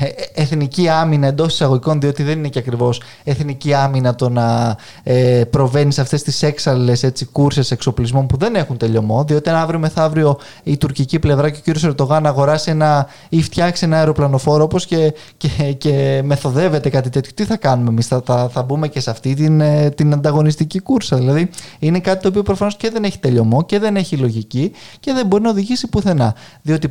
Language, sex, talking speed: Greek, male, 185 wpm